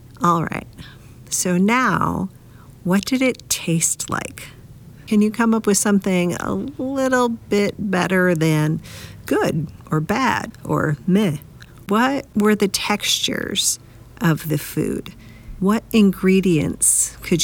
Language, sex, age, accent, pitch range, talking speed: English, female, 40-59, American, 150-190 Hz, 120 wpm